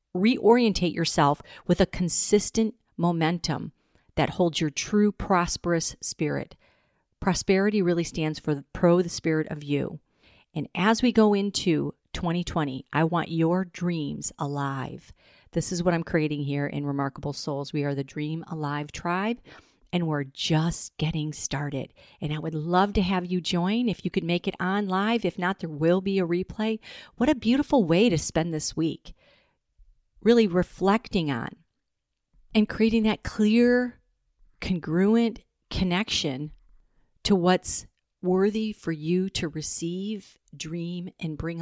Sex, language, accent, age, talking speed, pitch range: female, English, American, 40-59, 145 wpm, 150-190 Hz